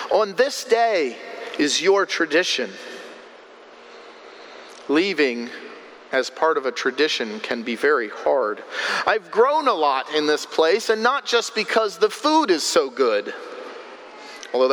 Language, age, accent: English, 40-59, American